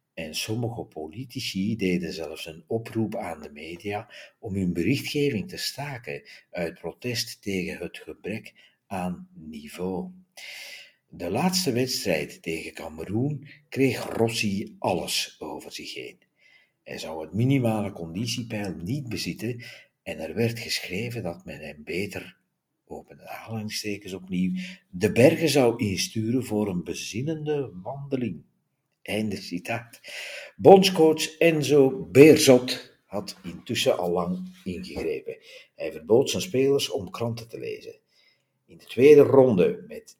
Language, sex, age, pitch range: Dutch, male, 60-79, 100-150 Hz